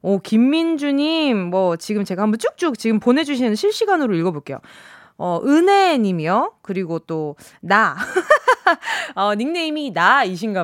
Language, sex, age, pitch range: Korean, female, 20-39, 190-310 Hz